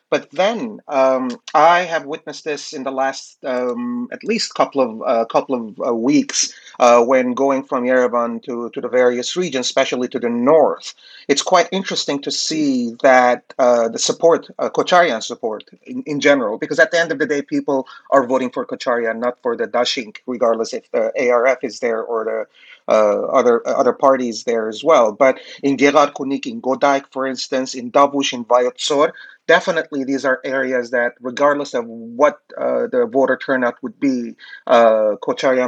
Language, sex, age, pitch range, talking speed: English, male, 30-49, 125-165 Hz, 185 wpm